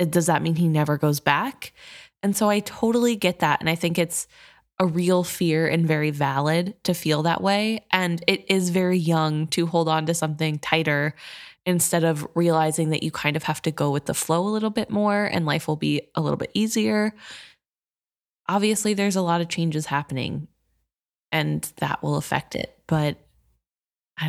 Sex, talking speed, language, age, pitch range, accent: female, 190 wpm, English, 20-39, 160-210 Hz, American